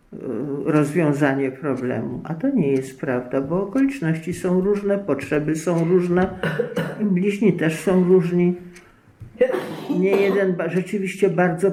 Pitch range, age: 160-215 Hz, 50-69